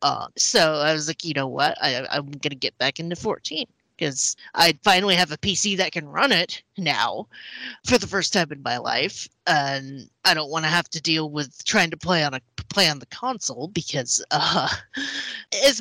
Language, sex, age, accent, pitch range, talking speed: English, female, 30-49, American, 150-225 Hz, 200 wpm